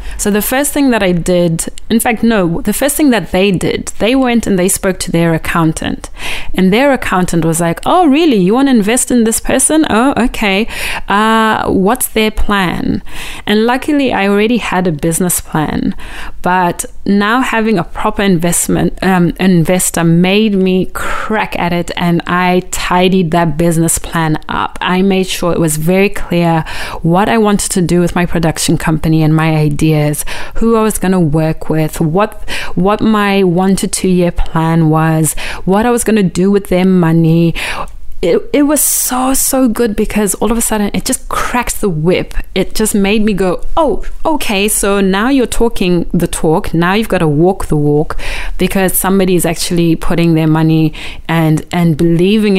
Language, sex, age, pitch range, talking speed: English, female, 20-39, 170-215 Hz, 185 wpm